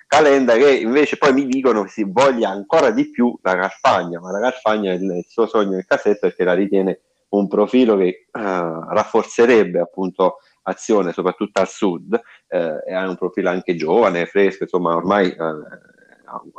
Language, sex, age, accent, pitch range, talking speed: Italian, male, 30-49, native, 95-115 Hz, 170 wpm